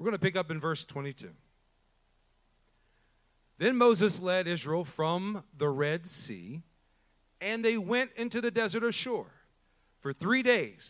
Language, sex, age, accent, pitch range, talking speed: English, male, 40-59, American, 145-210 Hz, 145 wpm